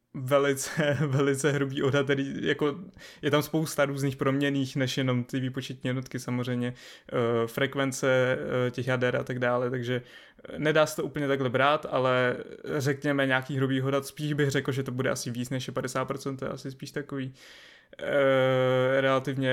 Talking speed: 165 wpm